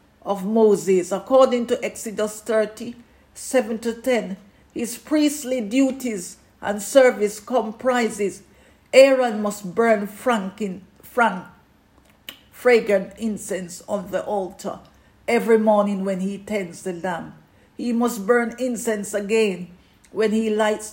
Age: 50-69